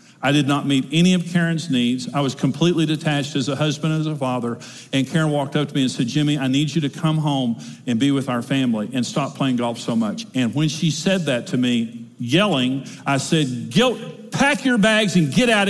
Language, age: English, 50-69